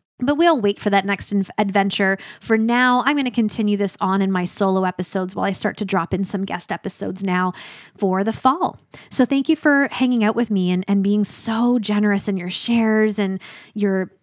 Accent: American